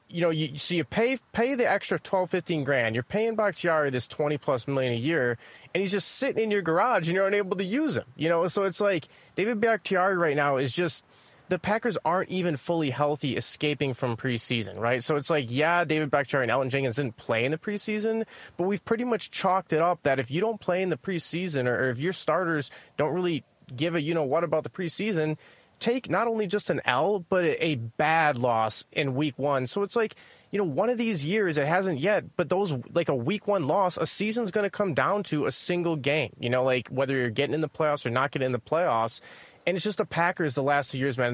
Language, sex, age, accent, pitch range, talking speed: English, male, 30-49, American, 135-185 Hz, 240 wpm